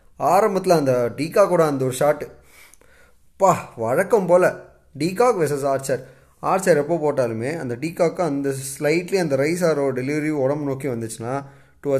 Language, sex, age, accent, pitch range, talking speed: Tamil, male, 20-39, native, 135-175 Hz, 120 wpm